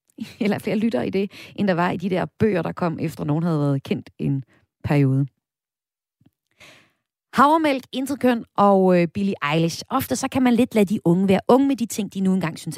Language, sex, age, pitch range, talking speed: Danish, female, 30-49, 165-235 Hz, 210 wpm